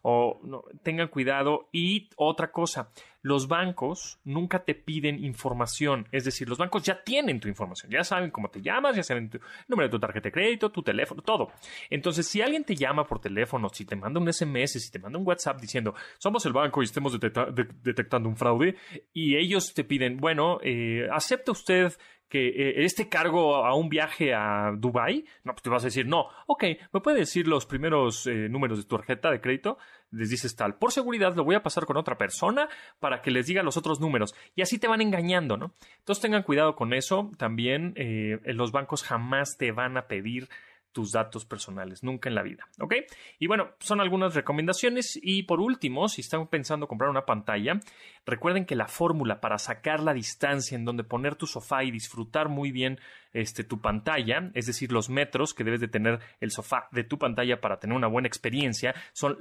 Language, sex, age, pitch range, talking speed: Spanish, male, 30-49, 120-170 Hz, 200 wpm